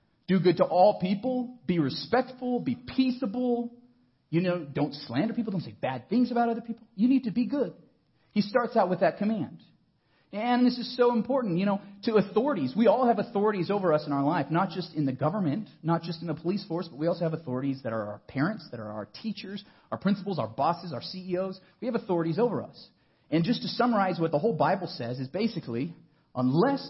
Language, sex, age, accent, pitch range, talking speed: English, male, 40-59, American, 145-215 Hz, 215 wpm